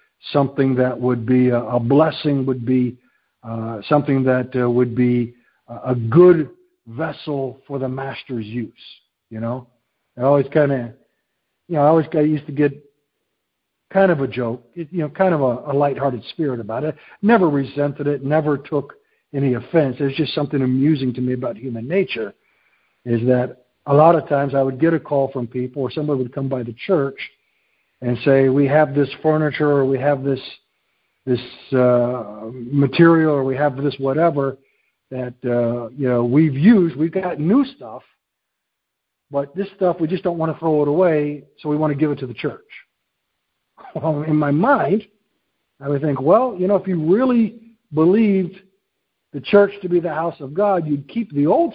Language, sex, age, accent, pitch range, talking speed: English, male, 60-79, American, 130-165 Hz, 185 wpm